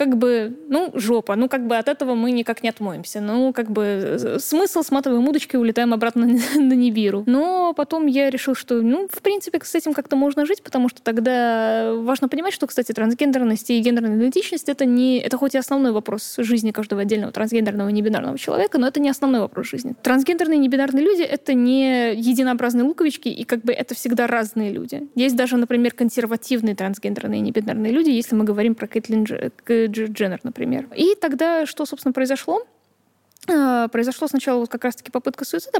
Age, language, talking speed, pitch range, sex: 20-39, Russian, 195 wpm, 220-275 Hz, female